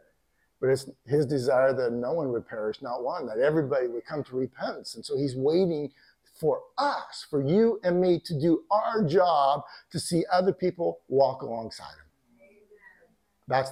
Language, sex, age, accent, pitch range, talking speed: English, male, 50-69, American, 135-200 Hz, 170 wpm